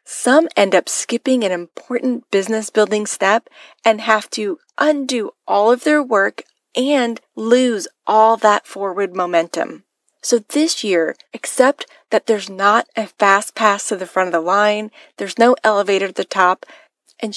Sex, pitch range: female, 195-245 Hz